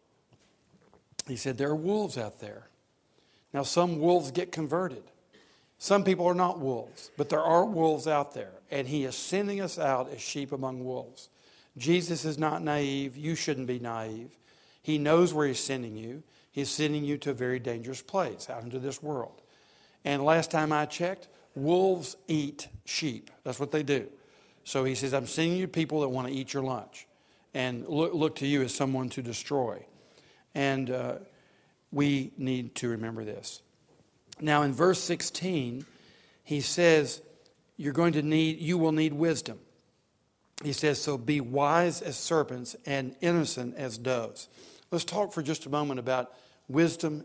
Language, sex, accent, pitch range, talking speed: English, male, American, 130-165 Hz, 170 wpm